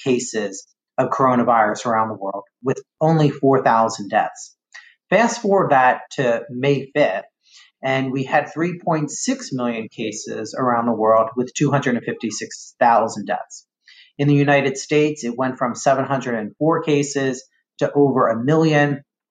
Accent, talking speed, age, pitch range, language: American, 125 wpm, 40-59, 120-155 Hz, English